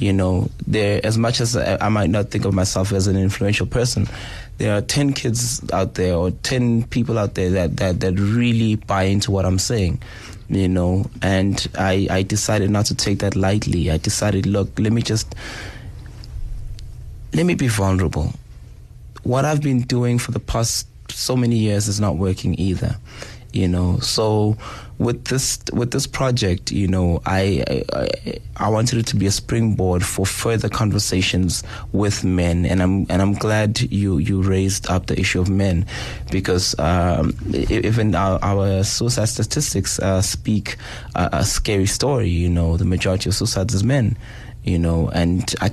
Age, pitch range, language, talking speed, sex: 20-39, 95-115 Hz, English, 175 wpm, male